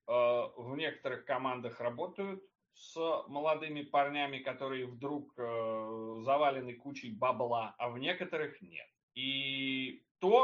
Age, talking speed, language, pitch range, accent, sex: 30-49, 105 wpm, Russian, 130-160 Hz, native, male